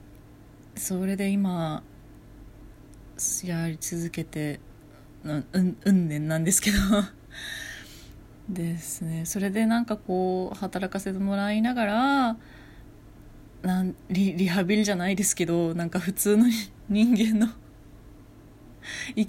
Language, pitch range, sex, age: Japanese, 175-225 Hz, female, 20-39